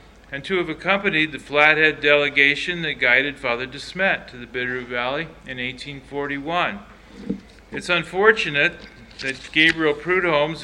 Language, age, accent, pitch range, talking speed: English, 40-59, American, 135-160 Hz, 125 wpm